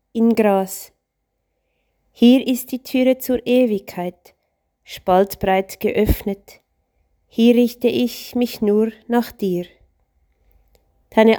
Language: German